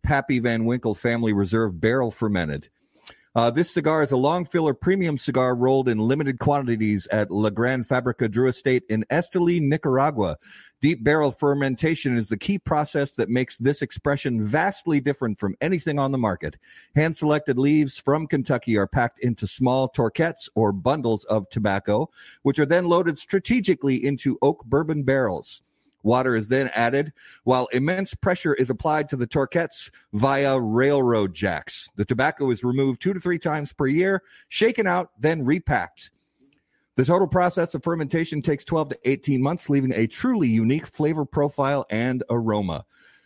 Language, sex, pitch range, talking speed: English, male, 120-150 Hz, 160 wpm